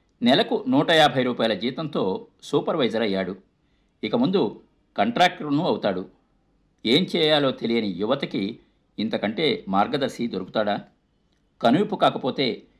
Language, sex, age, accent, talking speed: Telugu, male, 50-69, native, 95 wpm